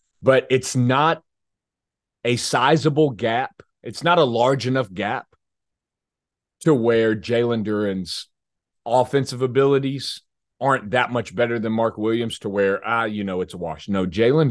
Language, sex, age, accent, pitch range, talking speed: English, male, 30-49, American, 100-135 Hz, 150 wpm